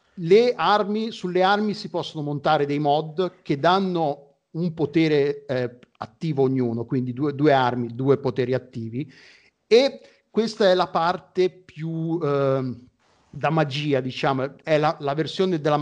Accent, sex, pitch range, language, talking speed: native, male, 135-175 Hz, Italian, 145 wpm